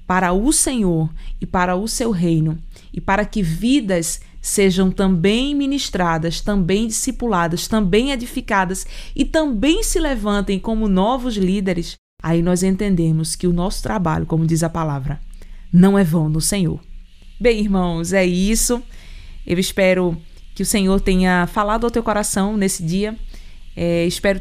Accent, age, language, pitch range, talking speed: Brazilian, 20-39, Portuguese, 180-225 Hz, 145 wpm